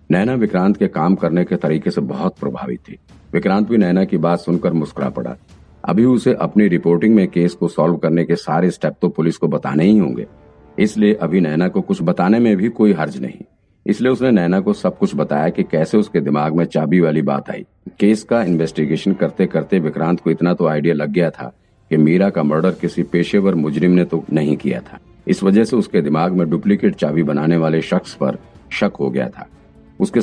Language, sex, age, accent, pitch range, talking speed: Hindi, male, 50-69, native, 80-100 Hz, 210 wpm